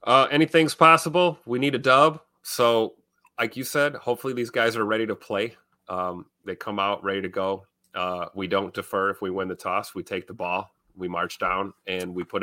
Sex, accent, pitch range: male, American, 100-135 Hz